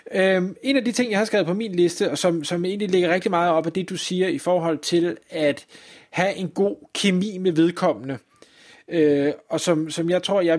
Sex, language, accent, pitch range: male, Danish, native, 155-190 Hz